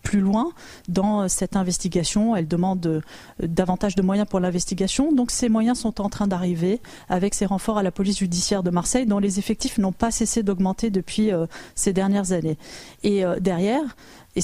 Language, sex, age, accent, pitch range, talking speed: French, female, 20-39, French, 185-225 Hz, 175 wpm